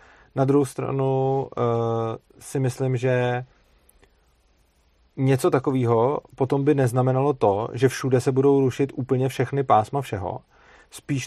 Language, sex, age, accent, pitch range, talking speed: Czech, male, 30-49, native, 115-135 Hz, 115 wpm